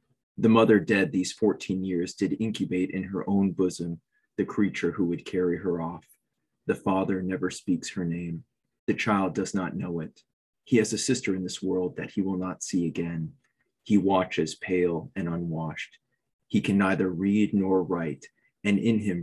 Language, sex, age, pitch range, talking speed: English, male, 20-39, 90-100 Hz, 180 wpm